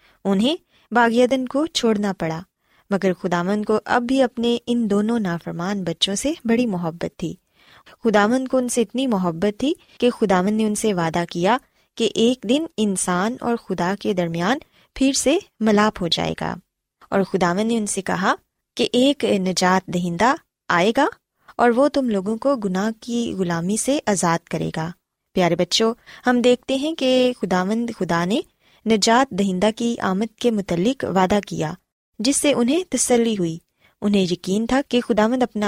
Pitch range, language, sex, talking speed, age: 185-250 Hz, Urdu, female, 170 wpm, 20-39